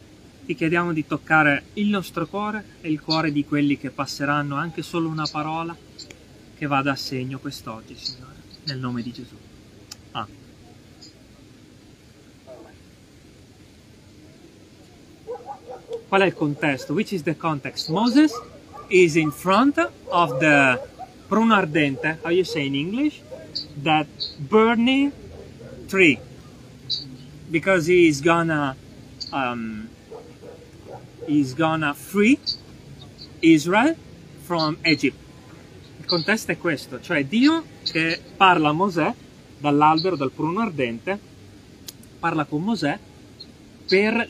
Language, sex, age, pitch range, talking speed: Italian, male, 30-49, 135-185 Hz, 105 wpm